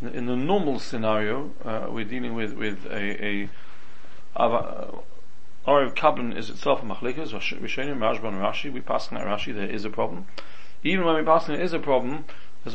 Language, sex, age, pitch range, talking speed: English, male, 40-59, 110-145 Hz, 185 wpm